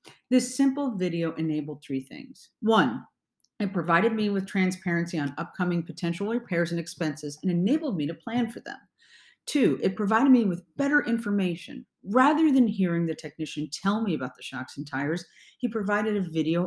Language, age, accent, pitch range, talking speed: English, 40-59, American, 150-225 Hz, 175 wpm